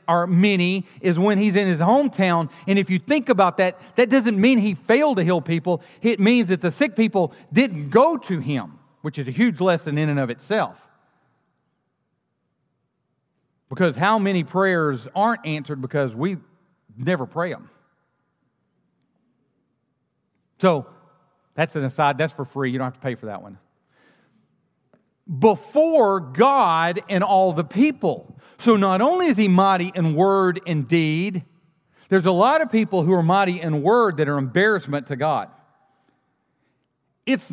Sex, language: male, English